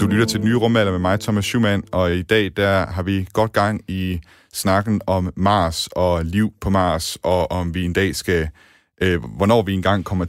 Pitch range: 90-105 Hz